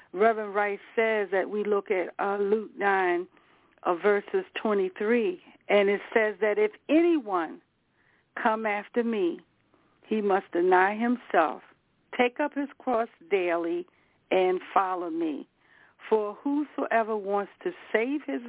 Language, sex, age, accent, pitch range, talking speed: English, female, 60-79, American, 190-290 Hz, 130 wpm